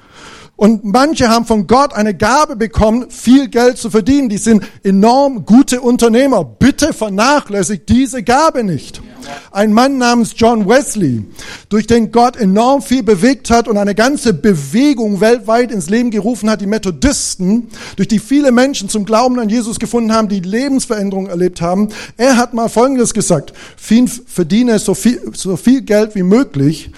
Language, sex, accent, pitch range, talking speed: German, male, German, 175-245 Hz, 155 wpm